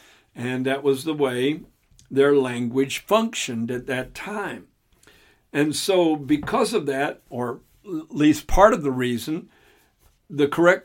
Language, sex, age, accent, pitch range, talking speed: English, male, 60-79, American, 130-165 Hz, 140 wpm